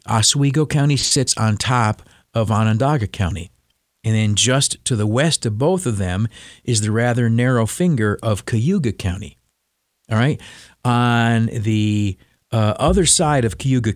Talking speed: 150 wpm